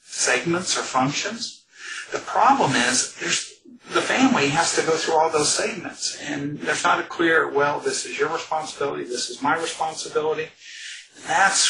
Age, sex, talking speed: 50-69, male, 160 wpm